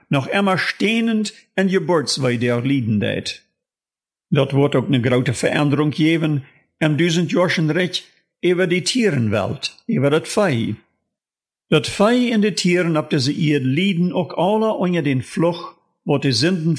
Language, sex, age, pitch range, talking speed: German, male, 50-69, 135-185 Hz, 155 wpm